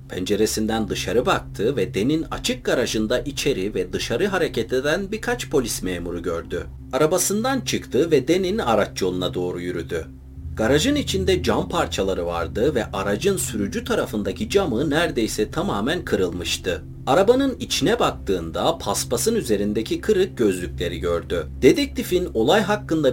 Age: 40-59